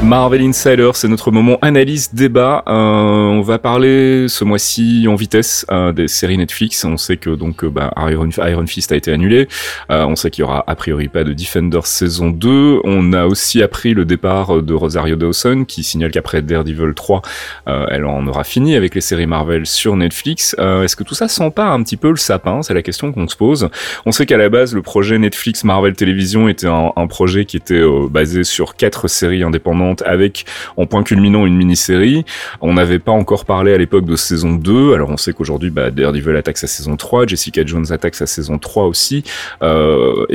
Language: French